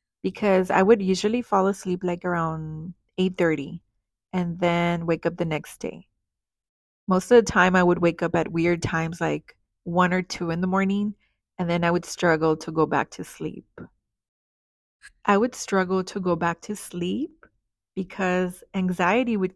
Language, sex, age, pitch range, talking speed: English, female, 30-49, 160-190 Hz, 170 wpm